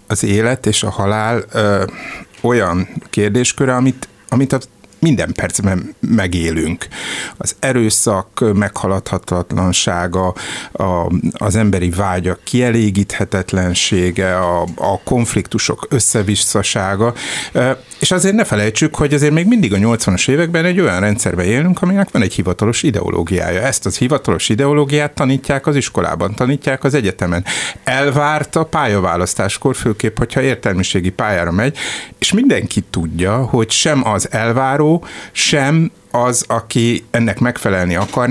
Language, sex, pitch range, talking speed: Hungarian, male, 100-130 Hz, 115 wpm